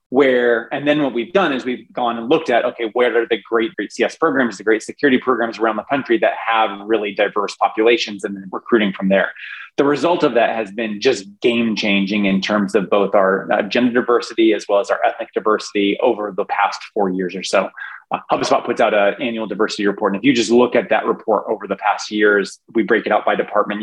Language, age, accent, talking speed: English, 20-39, American, 230 wpm